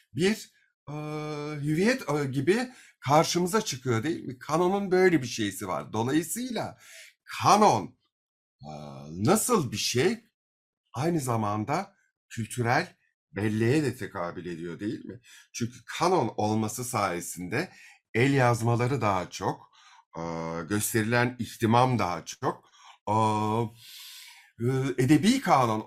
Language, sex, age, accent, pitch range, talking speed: Turkish, male, 50-69, native, 105-155 Hz, 100 wpm